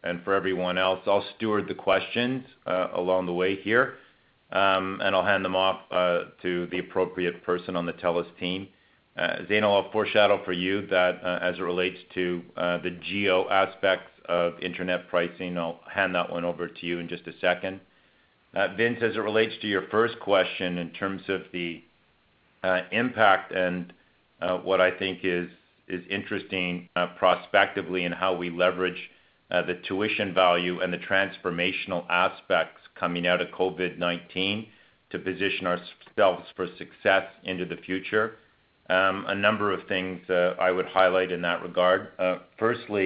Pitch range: 90-95 Hz